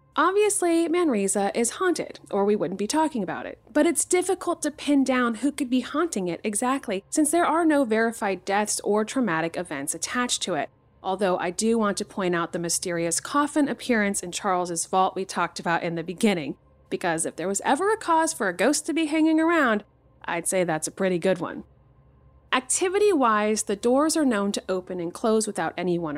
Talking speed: 200 wpm